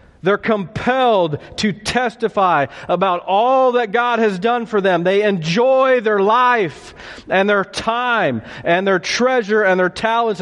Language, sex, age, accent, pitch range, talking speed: English, male, 40-59, American, 160-245 Hz, 145 wpm